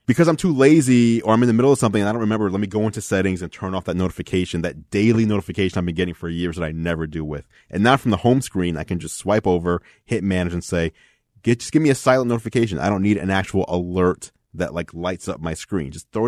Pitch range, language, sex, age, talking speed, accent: 85-105 Hz, English, male, 30-49, 275 wpm, American